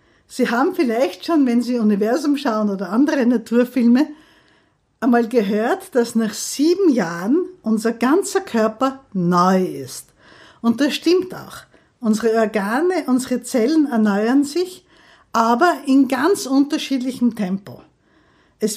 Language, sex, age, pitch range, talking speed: German, female, 50-69, 225-285 Hz, 120 wpm